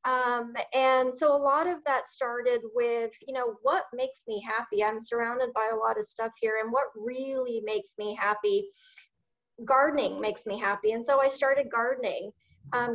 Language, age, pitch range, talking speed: English, 30-49, 220-270 Hz, 180 wpm